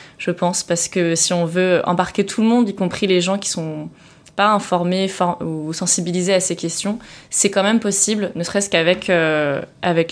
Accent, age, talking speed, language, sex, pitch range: French, 20-39, 210 wpm, French, female, 165-185 Hz